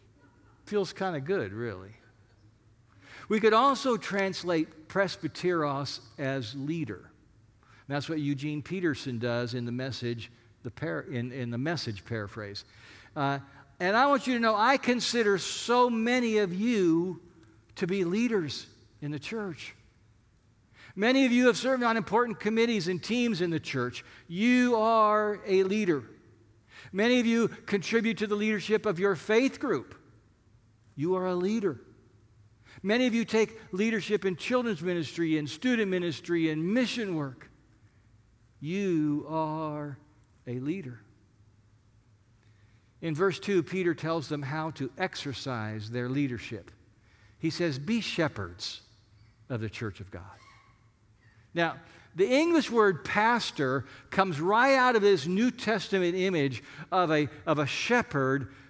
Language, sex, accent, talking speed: English, male, American, 140 wpm